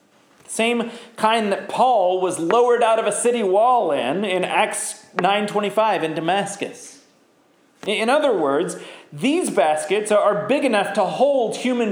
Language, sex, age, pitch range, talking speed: English, male, 40-59, 210-280 Hz, 145 wpm